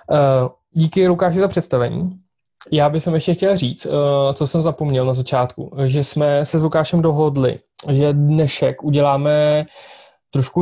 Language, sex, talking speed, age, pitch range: Czech, male, 155 wpm, 20-39, 135-155 Hz